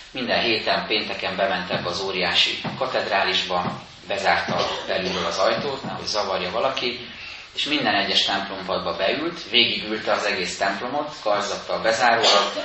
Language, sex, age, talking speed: Hungarian, male, 30-49, 125 wpm